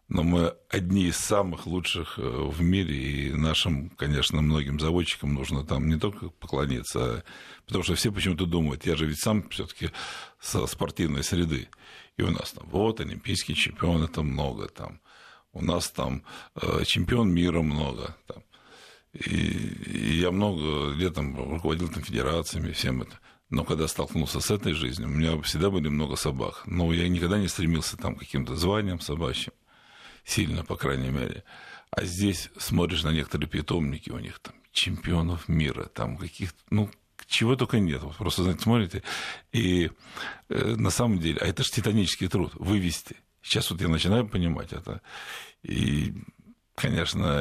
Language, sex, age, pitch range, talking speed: Russian, male, 50-69, 75-95 Hz, 155 wpm